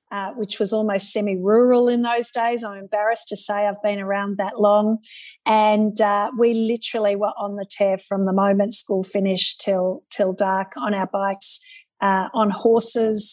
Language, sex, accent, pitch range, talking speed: English, female, Australian, 200-230 Hz, 175 wpm